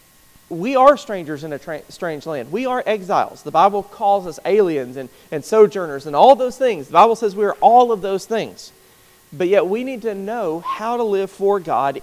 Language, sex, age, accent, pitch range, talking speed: English, male, 40-59, American, 175-220 Hz, 210 wpm